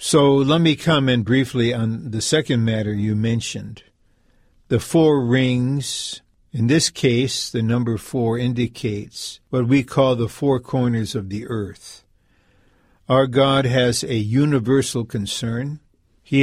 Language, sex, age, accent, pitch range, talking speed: English, male, 60-79, American, 115-135 Hz, 135 wpm